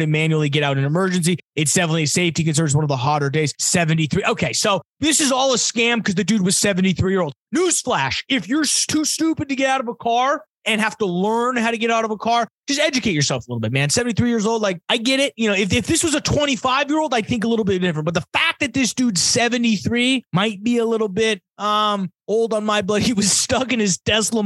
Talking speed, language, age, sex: 255 wpm, English, 30-49, male